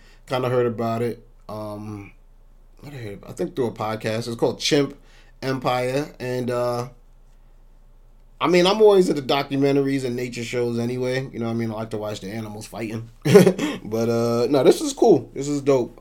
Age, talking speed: 30-49, 190 wpm